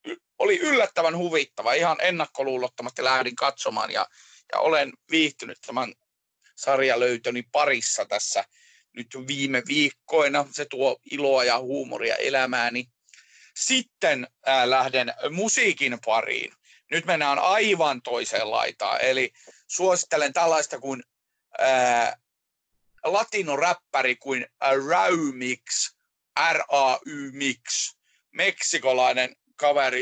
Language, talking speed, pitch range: Finnish, 85 wpm, 130-170 Hz